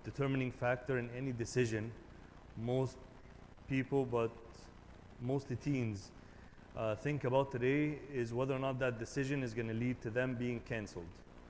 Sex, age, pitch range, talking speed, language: male, 30-49, 110-135 Hz, 145 wpm, English